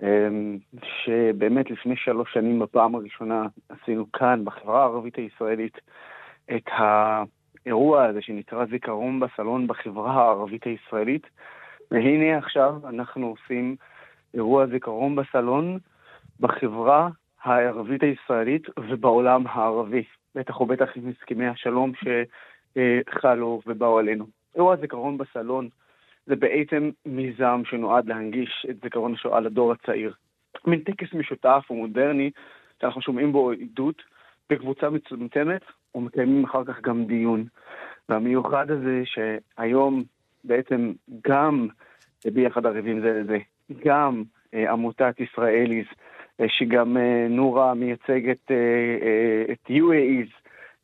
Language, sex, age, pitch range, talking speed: Hebrew, male, 30-49, 115-130 Hz, 110 wpm